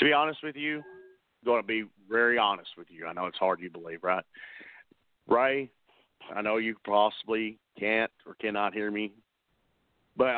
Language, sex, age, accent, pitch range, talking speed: English, male, 40-59, American, 110-130 Hz, 170 wpm